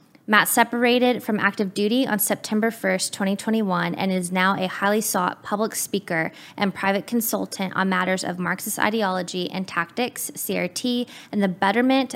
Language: English